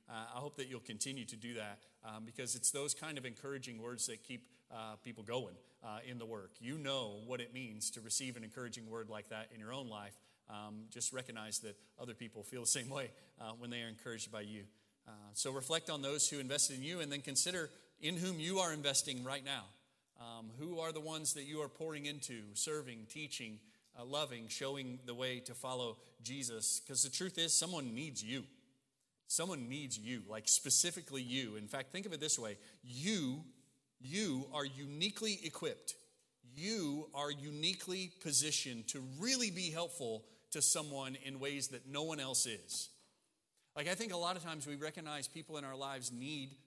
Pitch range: 120-155 Hz